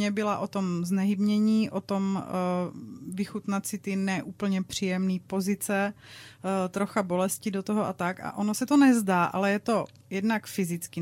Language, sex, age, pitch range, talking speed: Czech, female, 30-49, 185-225 Hz, 150 wpm